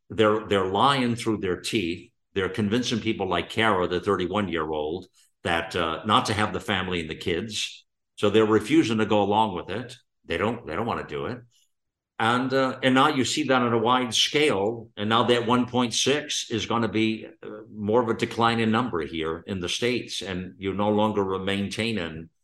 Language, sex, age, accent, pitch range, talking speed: English, male, 50-69, American, 105-125 Hz, 200 wpm